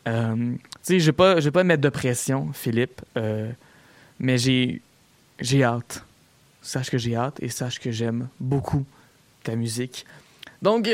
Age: 20-39